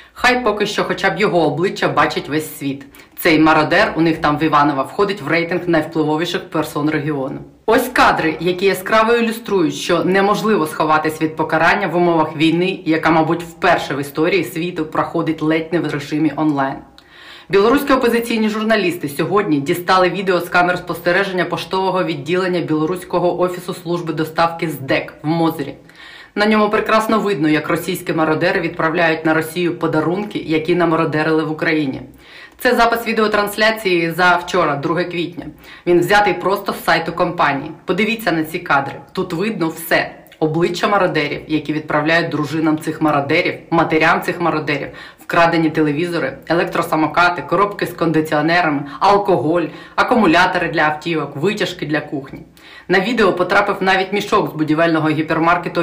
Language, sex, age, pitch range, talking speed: Ukrainian, female, 30-49, 155-190 Hz, 140 wpm